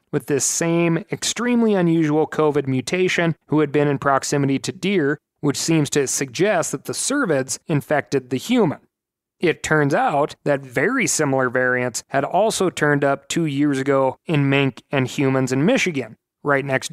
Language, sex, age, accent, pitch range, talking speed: English, male, 30-49, American, 135-165 Hz, 165 wpm